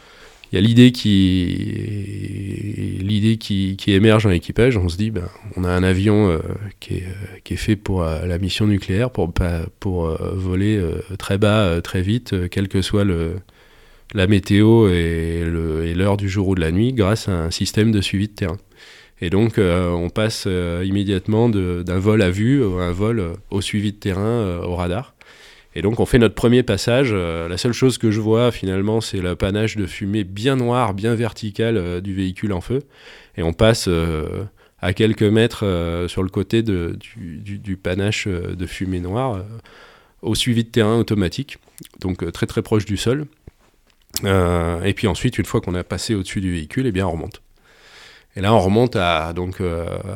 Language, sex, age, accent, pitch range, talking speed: French, male, 20-39, French, 90-110 Hz, 185 wpm